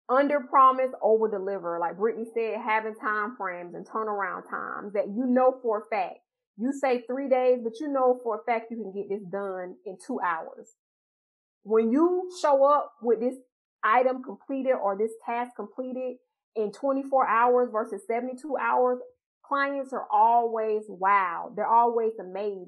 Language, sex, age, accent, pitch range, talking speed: English, female, 30-49, American, 215-275 Hz, 165 wpm